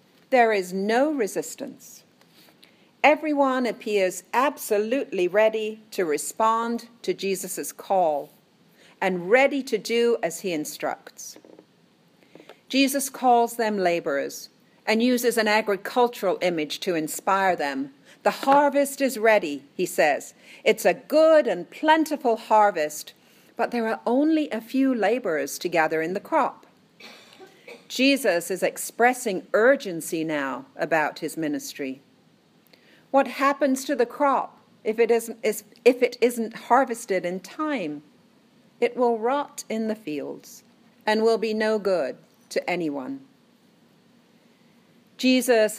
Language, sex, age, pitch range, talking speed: English, female, 50-69, 195-250 Hz, 120 wpm